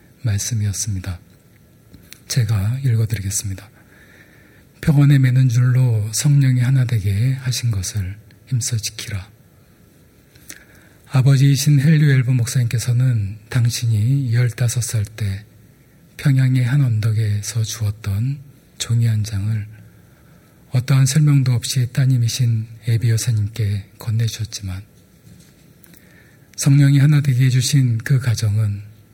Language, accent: Korean, native